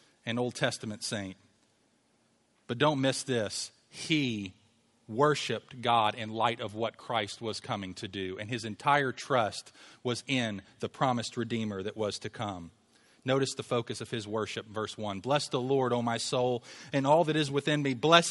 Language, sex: English, male